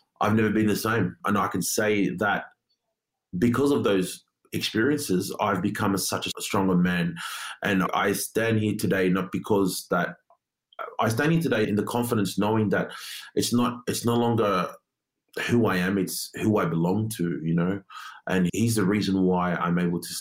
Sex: male